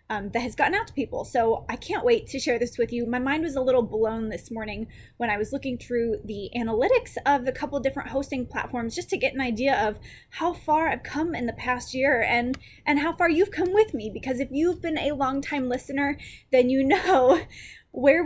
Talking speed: 235 wpm